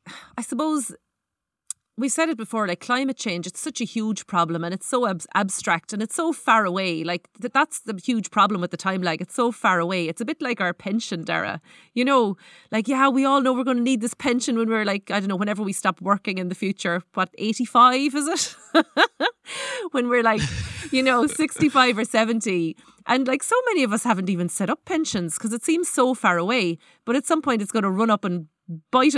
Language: English